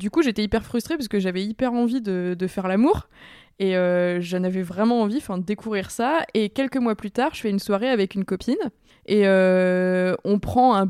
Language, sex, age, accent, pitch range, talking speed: French, female, 20-39, French, 180-220 Hz, 220 wpm